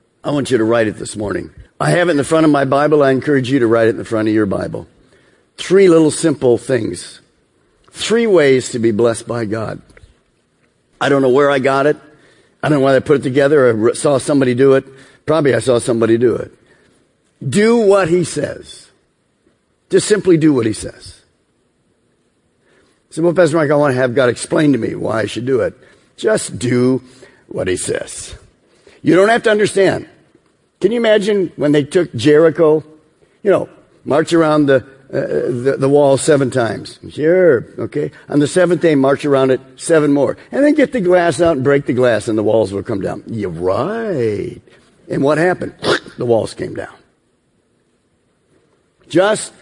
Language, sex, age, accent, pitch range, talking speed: English, male, 50-69, American, 125-160 Hz, 190 wpm